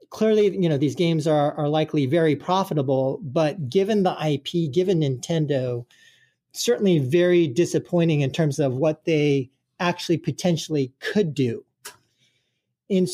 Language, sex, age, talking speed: English, male, 40-59, 135 wpm